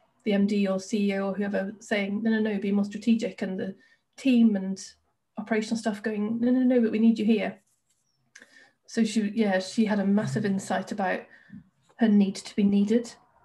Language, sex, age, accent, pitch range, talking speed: English, female, 30-49, British, 205-230 Hz, 190 wpm